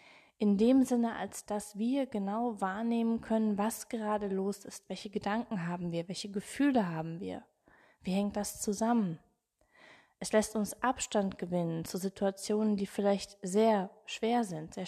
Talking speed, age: 155 wpm, 20-39